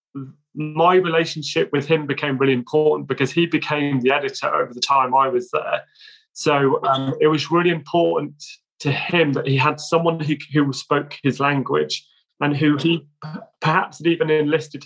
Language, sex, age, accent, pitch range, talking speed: English, male, 30-49, British, 130-155 Hz, 170 wpm